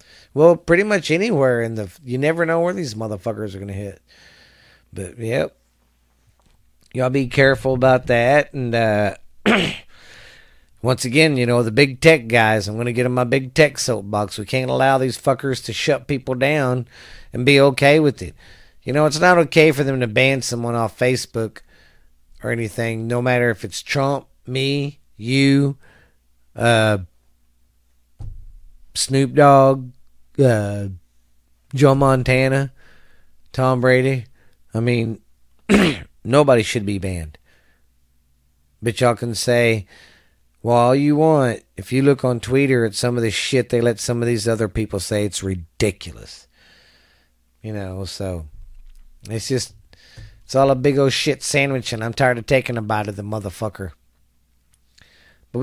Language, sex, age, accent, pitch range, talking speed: English, male, 40-59, American, 95-135 Hz, 155 wpm